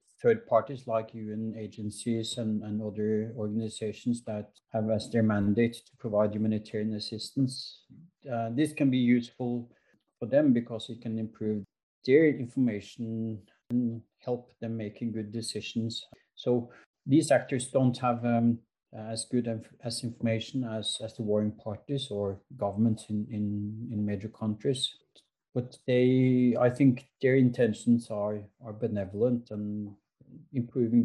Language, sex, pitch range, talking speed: Swedish, male, 110-130 Hz, 135 wpm